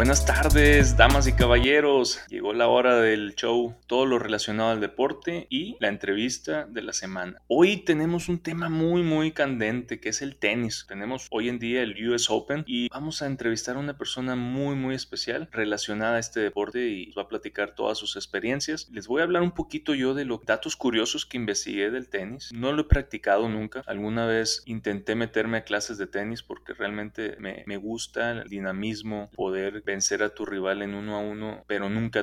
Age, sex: 20-39, male